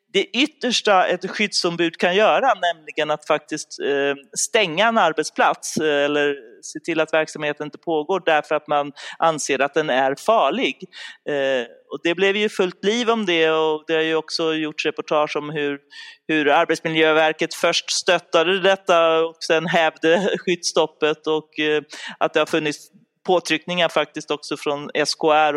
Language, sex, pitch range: Swedish, male, 155-205 Hz